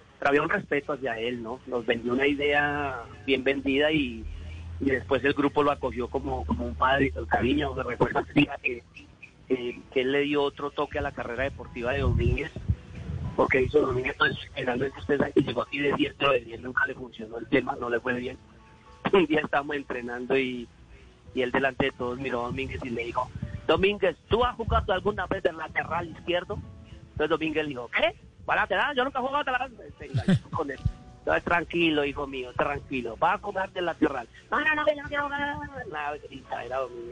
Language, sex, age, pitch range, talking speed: Spanish, male, 40-59, 125-155 Hz, 180 wpm